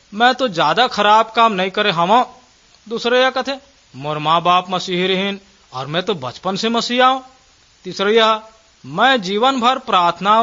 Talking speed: 160 wpm